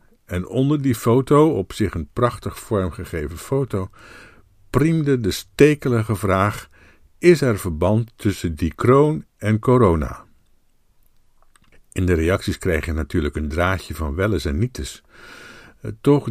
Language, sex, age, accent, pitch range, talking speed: Dutch, male, 50-69, Dutch, 90-125 Hz, 130 wpm